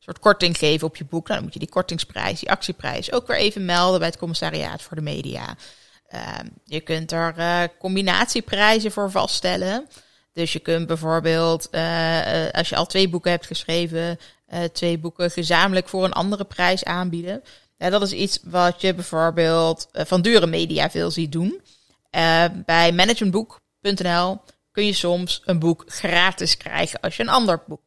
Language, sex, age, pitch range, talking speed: Dutch, female, 20-39, 165-200 Hz, 170 wpm